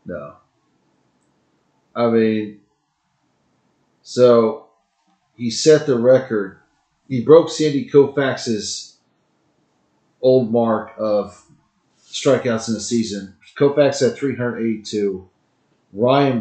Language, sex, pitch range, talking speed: English, male, 110-130 Hz, 85 wpm